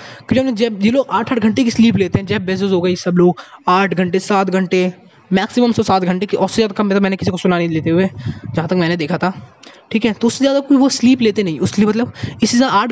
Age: 20-39